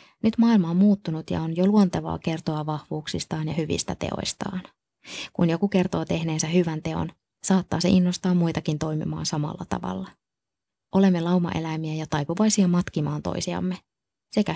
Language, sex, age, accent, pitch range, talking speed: Finnish, female, 20-39, native, 155-180 Hz, 135 wpm